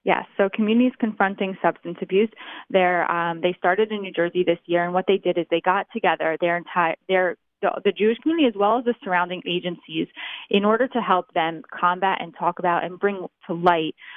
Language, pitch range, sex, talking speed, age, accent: English, 170-200 Hz, female, 210 wpm, 20-39, American